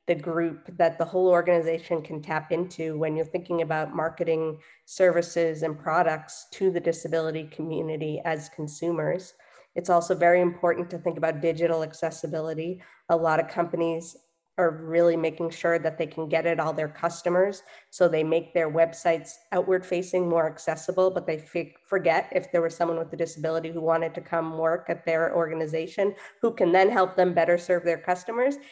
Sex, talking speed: female, 180 wpm